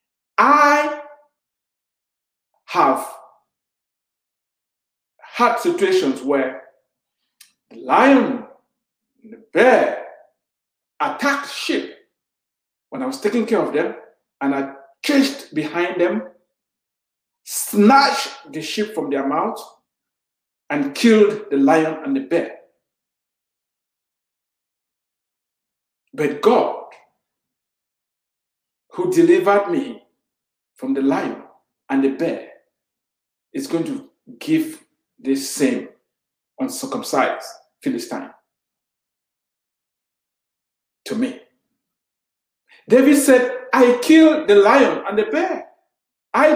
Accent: Nigerian